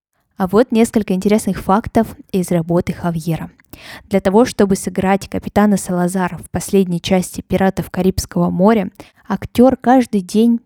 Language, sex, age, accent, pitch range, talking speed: Russian, female, 20-39, native, 180-225 Hz, 130 wpm